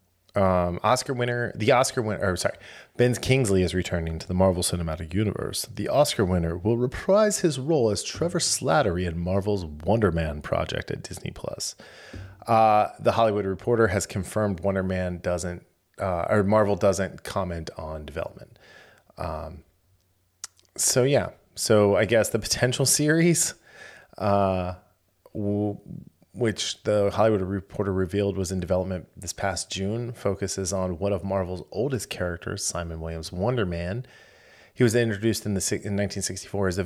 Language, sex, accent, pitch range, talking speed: English, male, American, 90-110 Hz, 150 wpm